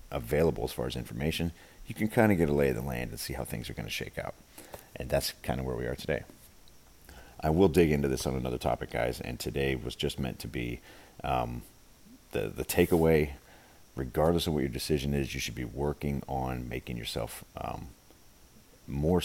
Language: English